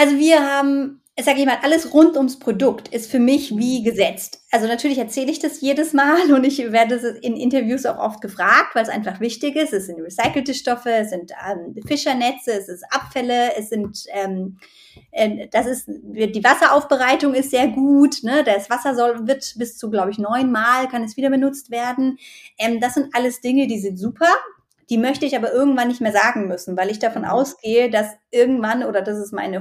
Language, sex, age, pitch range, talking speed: German, female, 30-49, 220-270 Hz, 205 wpm